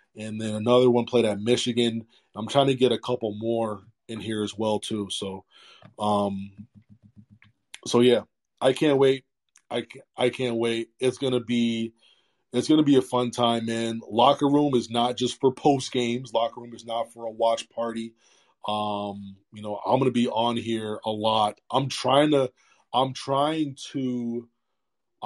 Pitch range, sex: 110-125 Hz, male